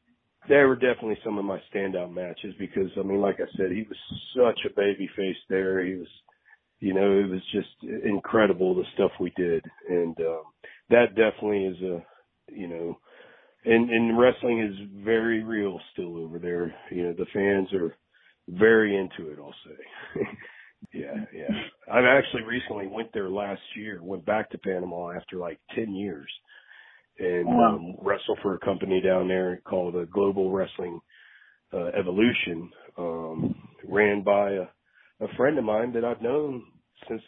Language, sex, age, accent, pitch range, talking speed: English, male, 40-59, American, 95-110 Hz, 165 wpm